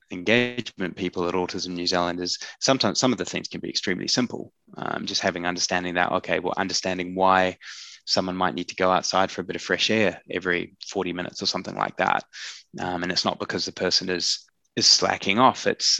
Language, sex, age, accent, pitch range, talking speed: English, male, 20-39, Australian, 90-100 Hz, 210 wpm